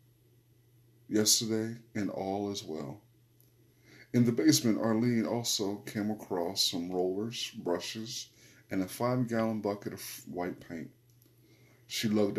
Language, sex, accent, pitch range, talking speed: English, male, American, 100-120 Hz, 115 wpm